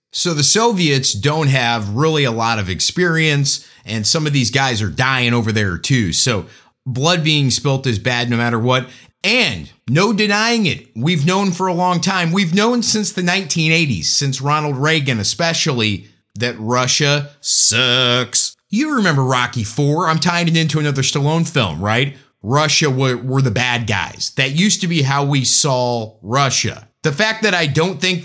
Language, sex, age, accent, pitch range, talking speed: English, male, 30-49, American, 130-190 Hz, 175 wpm